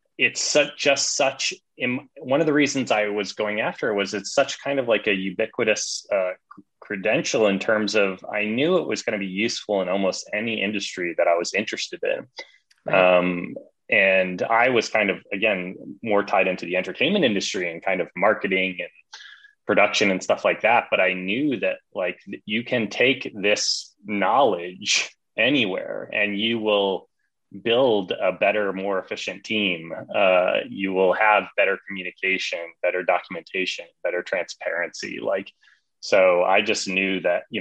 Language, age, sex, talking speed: English, 20-39, male, 170 wpm